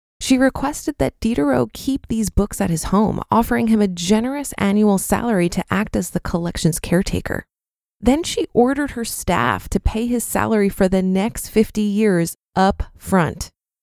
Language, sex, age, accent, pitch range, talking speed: English, female, 20-39, American, 185-235 Hz, 165 wpm